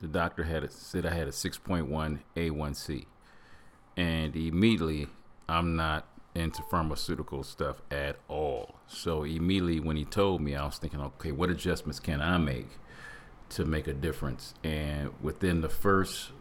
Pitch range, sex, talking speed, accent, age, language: 70-85 Hz, male, 155 wpm, American, 40-59, English